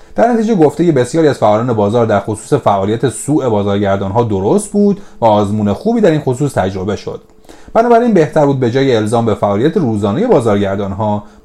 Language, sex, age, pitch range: Persian, male, 30-49, 105-170 Hz